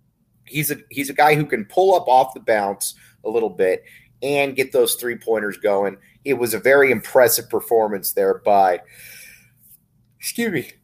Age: 30-49